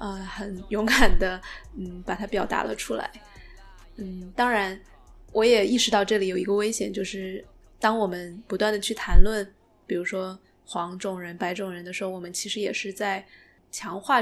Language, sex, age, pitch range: Chinese, female, 20-39, 185-215 Hz